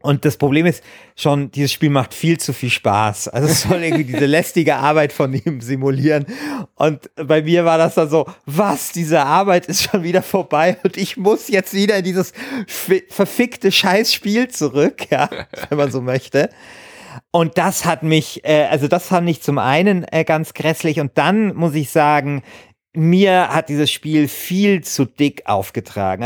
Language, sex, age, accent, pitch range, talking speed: German, male, 40-59, German, 135-170 Hz, 175 wpm